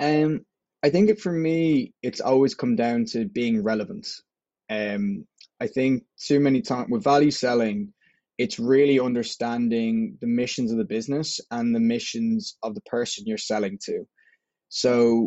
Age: 20-39